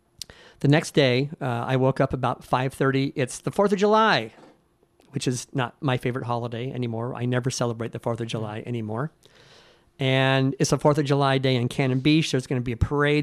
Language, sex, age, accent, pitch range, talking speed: English, male, 50-69, American, 125-140 Hz, 205 wpm